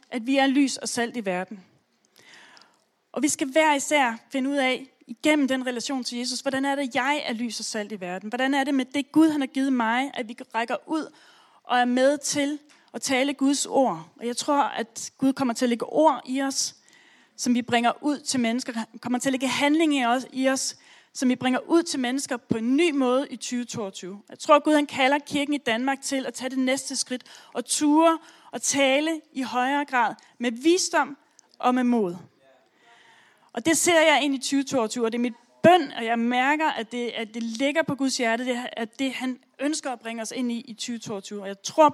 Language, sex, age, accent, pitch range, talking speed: Danish, female, 30-49, native, 235-285 Hz, 230 wpm